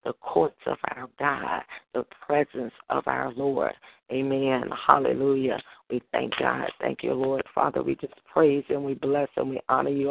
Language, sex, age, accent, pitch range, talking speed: English, female, 40-59, American, 140-155 Hz, 170 wpm